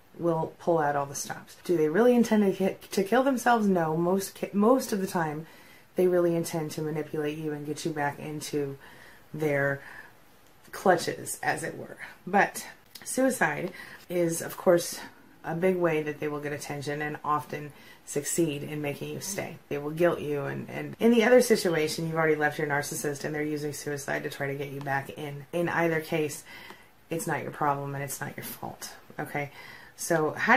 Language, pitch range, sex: English, 150-180 Hz, female